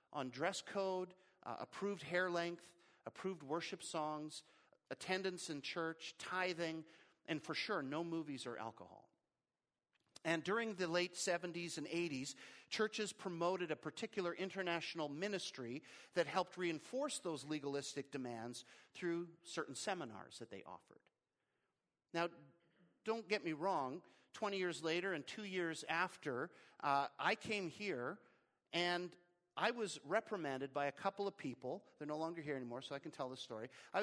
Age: 50-69